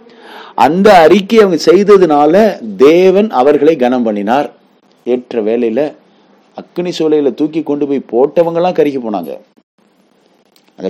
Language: Tamil